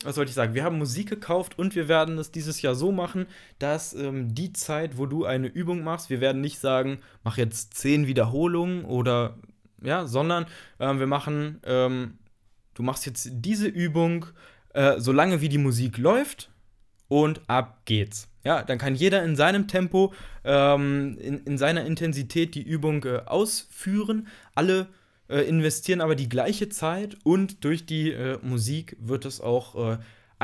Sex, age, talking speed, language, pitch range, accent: male, 20-39, 170 wpm, German, 120-155 Hz, German